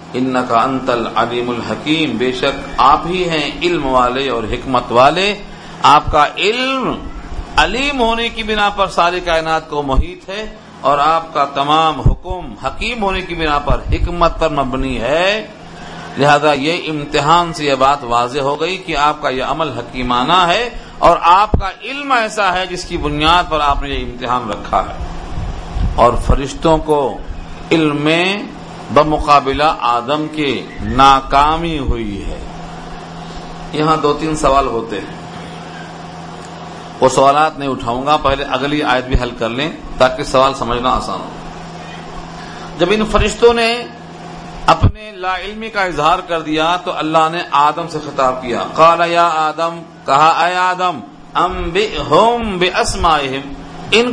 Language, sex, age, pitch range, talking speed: Urdu, male, 50-69, 130-180 Hz, 150 wpm